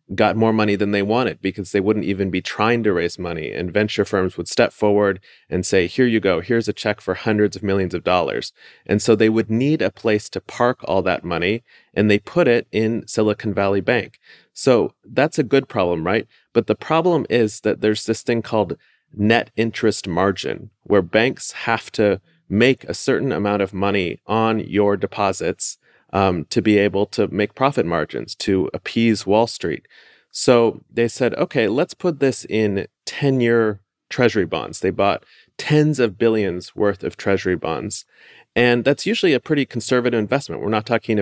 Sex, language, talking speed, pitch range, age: male, English, 185 wpm, 100-115 Hz, 30-49